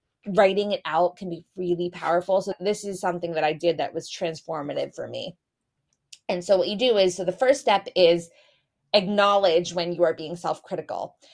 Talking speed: 190 wpm